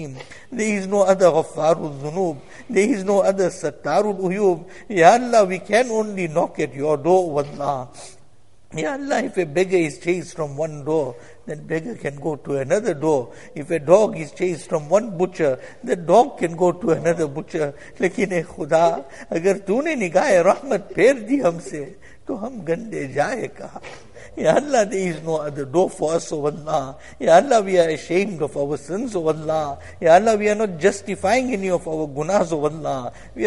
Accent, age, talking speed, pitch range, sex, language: Indian, 60-79, 165 wpm, 150-190 Hz, male, English